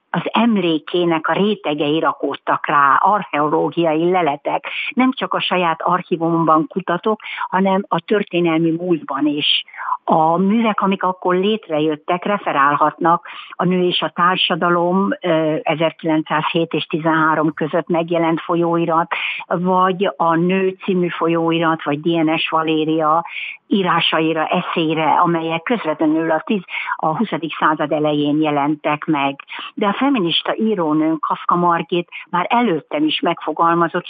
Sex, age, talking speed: female, 60-79, 115 wpm